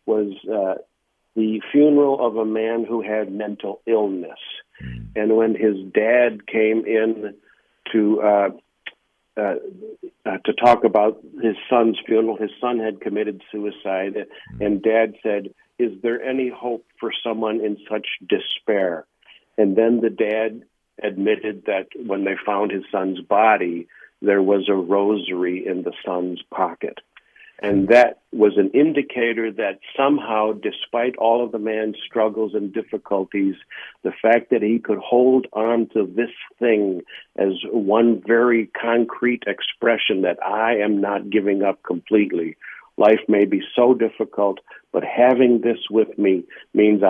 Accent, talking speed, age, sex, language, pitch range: American, 145 wpm, 50-69, male, English, 100-115 Hz